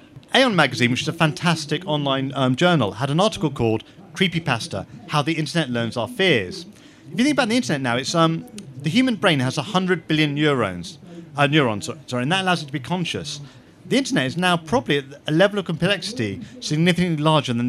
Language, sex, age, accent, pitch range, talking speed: English, male, 40-59, British, 135-180 Hz, 200 wpm